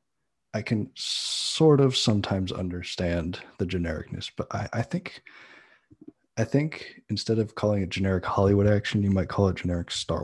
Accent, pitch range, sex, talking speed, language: American, 90-100 Hz, male, 160 wpm, English